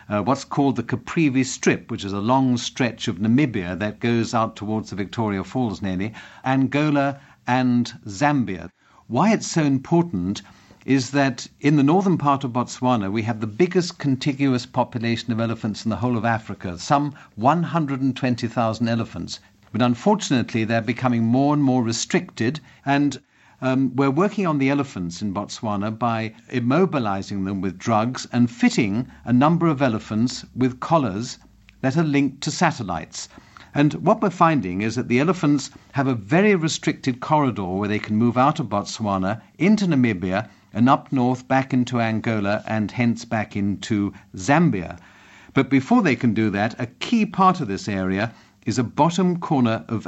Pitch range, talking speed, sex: 110-140 Hz, 165 wpm, male